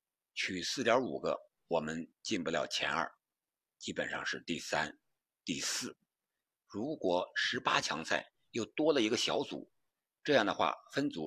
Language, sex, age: Chinese, male, 50-69